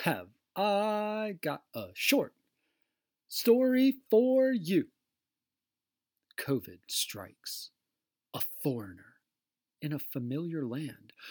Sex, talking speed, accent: male, 85 wpm, American